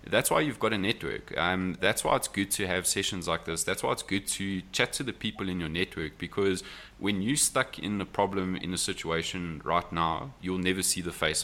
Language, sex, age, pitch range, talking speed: English, male, 20-39, 85-105 Hz, 240 wpm